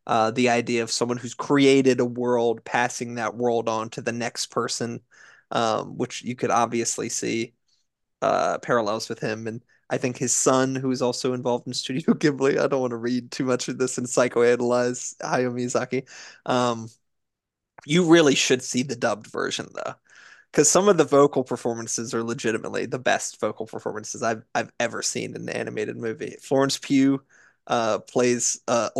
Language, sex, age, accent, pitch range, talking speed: English, male, 20-39, American, 120-140 Hz, 180 wpm